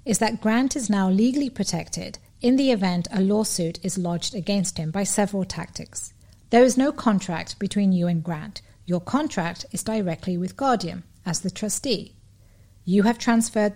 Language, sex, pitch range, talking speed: English, female, 180-225 Hz, 170 wpm